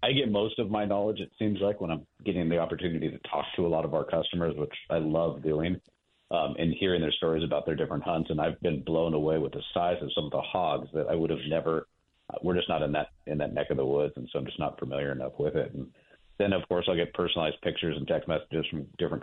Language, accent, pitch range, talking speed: English, American, 75-85 Hz, 270 wpm